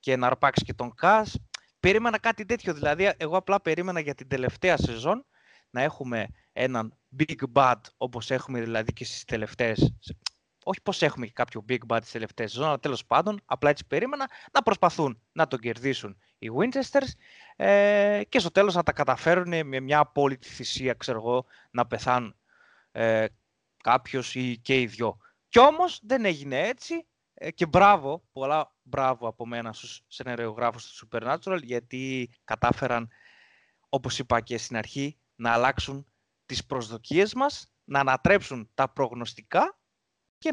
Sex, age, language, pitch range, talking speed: male, 20-39, Greek, 120-175 Hz, 155 wpm